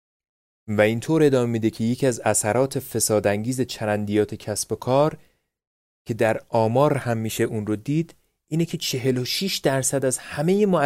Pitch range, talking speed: 105-145 Hz, 155 wpm